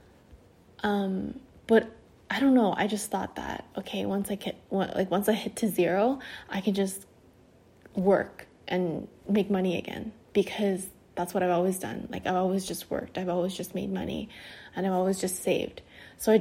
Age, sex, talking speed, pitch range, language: 20-39, female, 185 wpm, 180-210 Hz, English